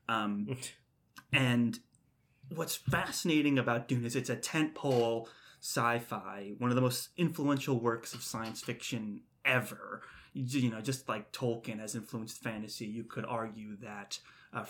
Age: 20-39